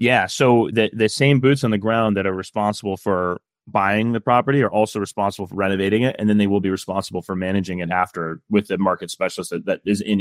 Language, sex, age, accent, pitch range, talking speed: English, male, 20-39, American, 95-110 Hz, 235 wpm